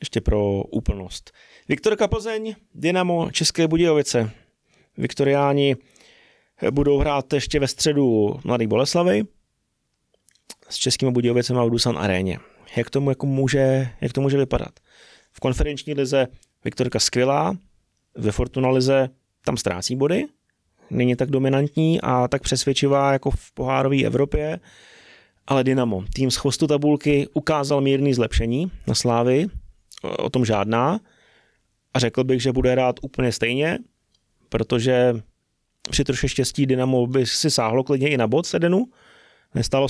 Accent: native